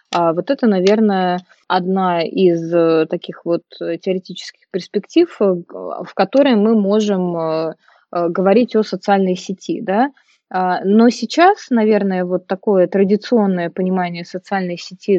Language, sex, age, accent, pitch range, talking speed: Russian, female, 20-39, native, 185-225 Hz, 105 wpm